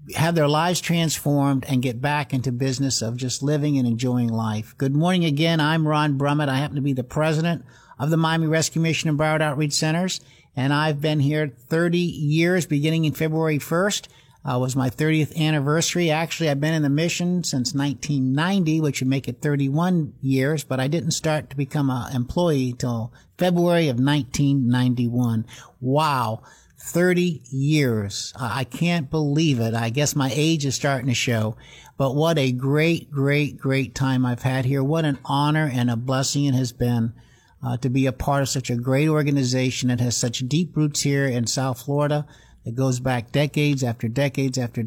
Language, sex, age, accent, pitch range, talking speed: English, male, 60-79, American, 125-155 Hz, 185 wpm